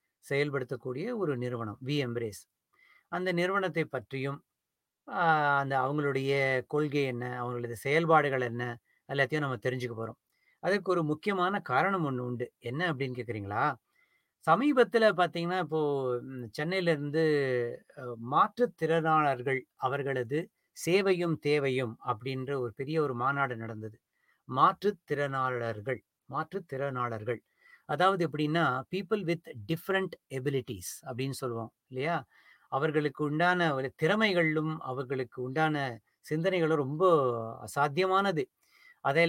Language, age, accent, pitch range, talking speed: English, 30-49, Indian, 130-170 Hz, 110 wpm